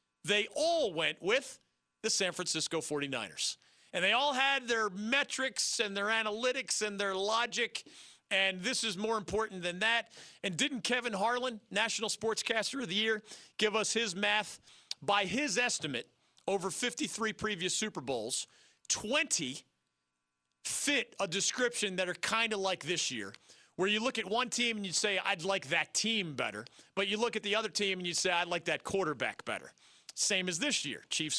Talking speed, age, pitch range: 180 wpm, 40-59, 170-230 Hz